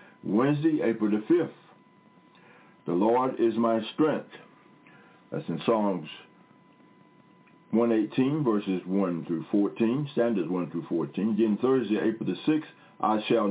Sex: male